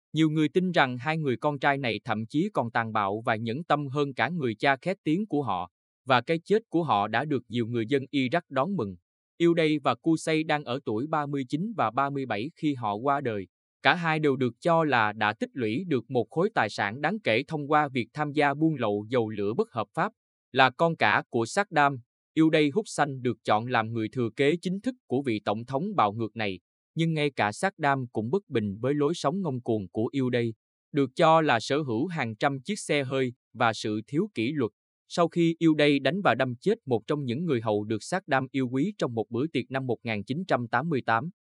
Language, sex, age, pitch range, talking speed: Vietnamese, male, 20-39, 115-155 Hz, 225 wpm